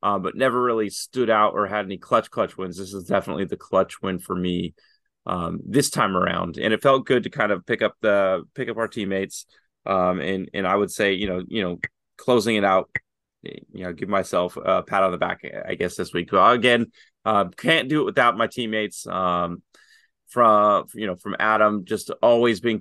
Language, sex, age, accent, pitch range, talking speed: English, male, 30-49, American, 95-110 Hz, 215 wpm